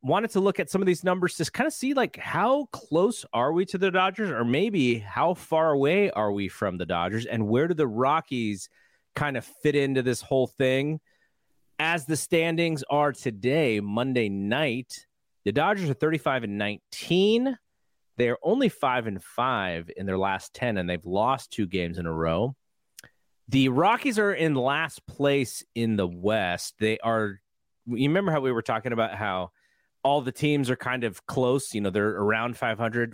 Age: 30-49